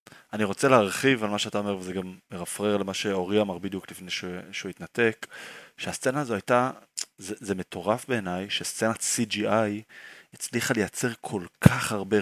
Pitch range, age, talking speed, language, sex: 95-120 Hz, 20-39, 140 wpm, Hebrew, male